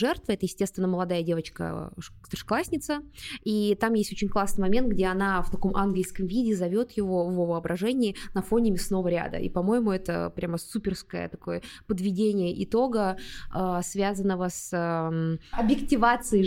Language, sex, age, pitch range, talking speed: Russian, female, 20-39, 185-220 Hz, 130 wpm